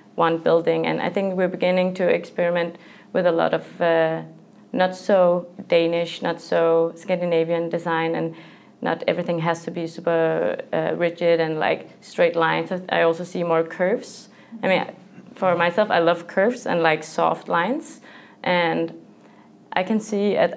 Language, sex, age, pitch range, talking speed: English, female, 20-39, 165-205 Hz, 165 wpm